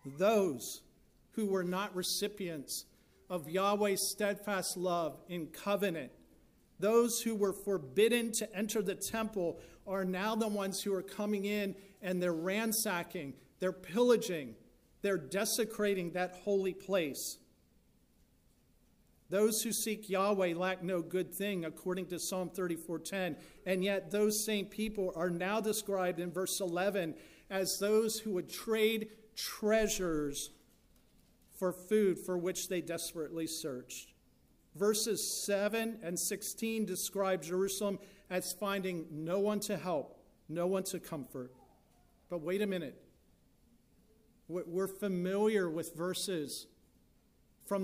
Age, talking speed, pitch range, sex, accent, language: 50-69, 125 wpm, 180-205 Hz, male, American, English